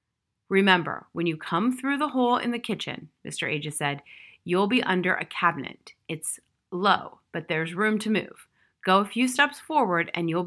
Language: English